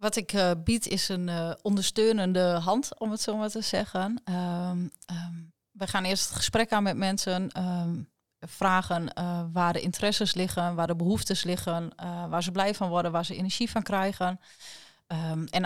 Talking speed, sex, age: 190 wpm, female, 30-49